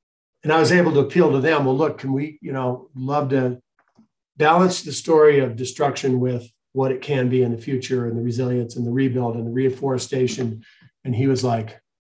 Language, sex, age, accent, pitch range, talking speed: English, male, 40-59, American, 125-145 Hz, 210 wpm